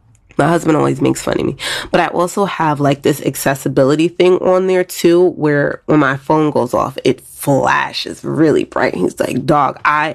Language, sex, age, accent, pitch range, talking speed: English, female, 20-39, American, 140-185 Hz, 190 wpm